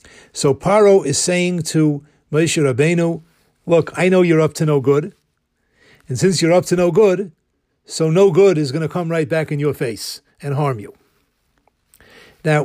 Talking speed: 180 wpm